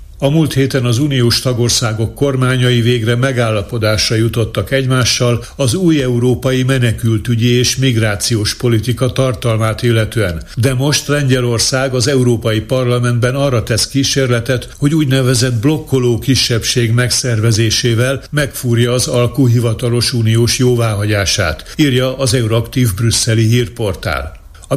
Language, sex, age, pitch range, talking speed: Hungarian, male, 60-79, 110-130 Hz, 110 wpm